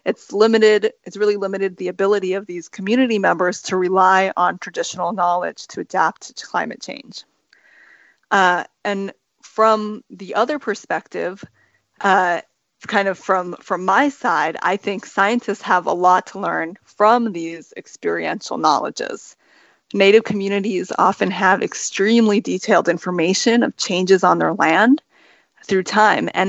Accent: American